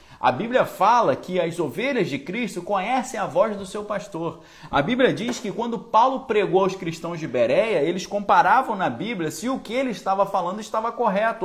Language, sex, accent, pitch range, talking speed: Portuguese, male, Brazilian, 135-200 Hz, 195 wpm